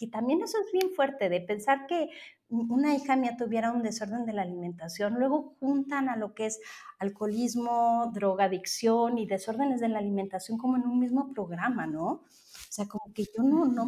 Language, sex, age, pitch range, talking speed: Spanish, female, 30-49, 185-240 Hz, 190 wpm